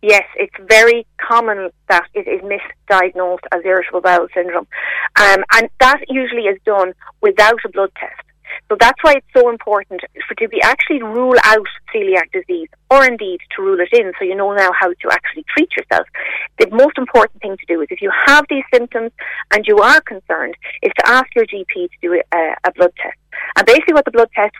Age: 30-49